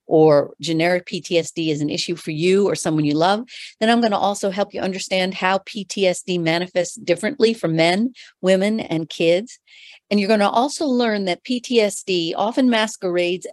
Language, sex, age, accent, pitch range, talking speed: English, female, 50-69, American, 170-220 Hz, 165 wpm